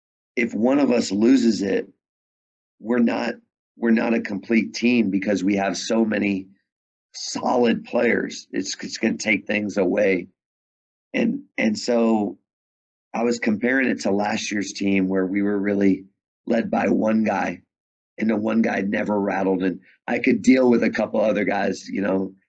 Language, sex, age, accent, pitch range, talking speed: English, male, 40-59, American, 100-120 Hz, 170 wpm